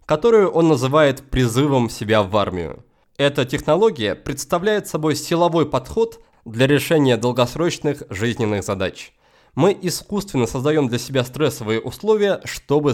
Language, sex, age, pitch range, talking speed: Russian, male, 20-39, 115-170 Hz, 120 wpm